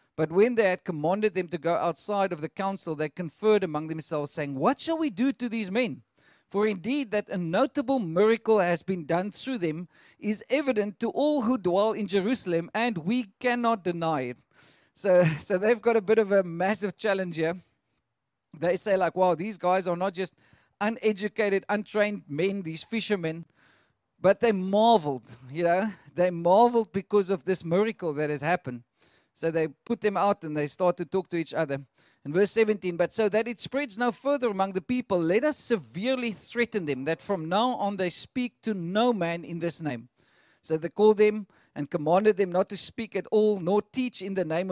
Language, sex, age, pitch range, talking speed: English, male, 40-59, 165-220 Hz, 195 wpm